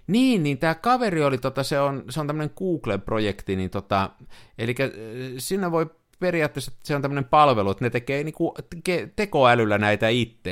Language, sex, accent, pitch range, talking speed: Finnish, male, native, 110-145 Hz, 175 wpm